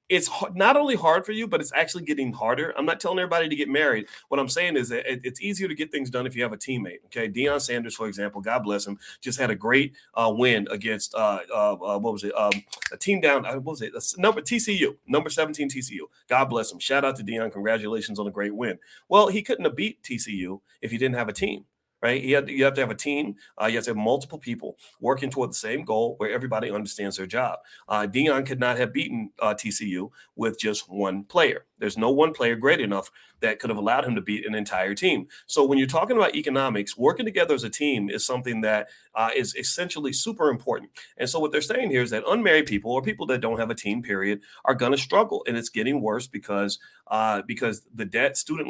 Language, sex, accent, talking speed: English, male, American, 235 wpm